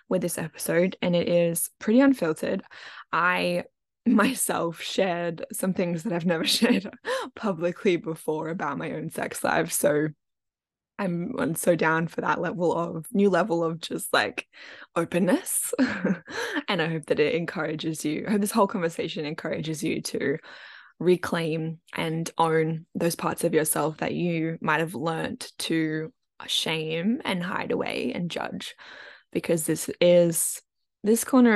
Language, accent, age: English, Australian, 10-29